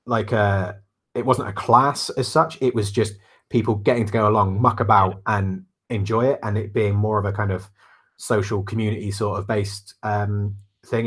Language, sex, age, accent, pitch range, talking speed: English, male, 30-49, British, 95-110 Hz, 195 wpm